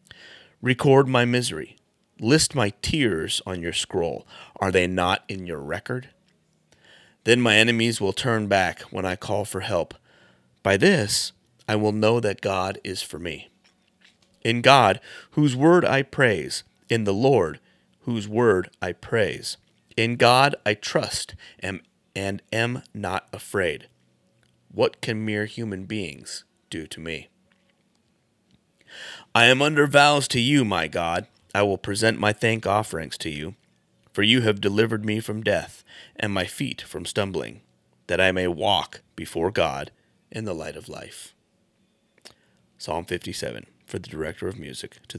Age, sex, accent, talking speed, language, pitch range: 30-49, male, American, 150 wpm, English, 95-125 Hz